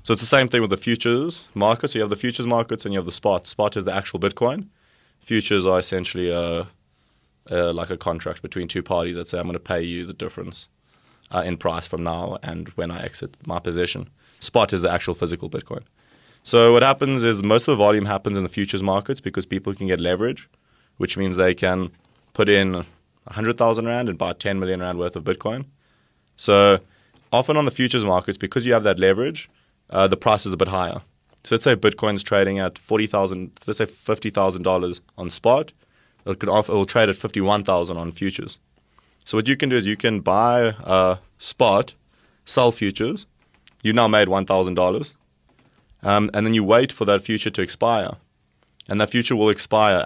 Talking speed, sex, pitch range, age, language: 210 wpm, male, 90-110 Hz, 20-39, English